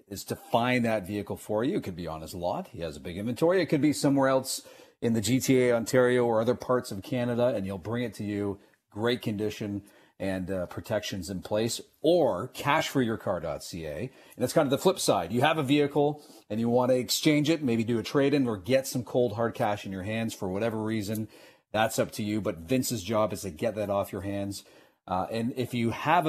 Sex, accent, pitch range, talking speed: male, American, 100-125 Hz, 235 wpm